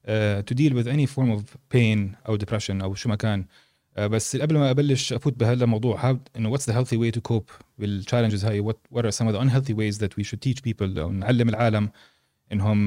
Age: 30-49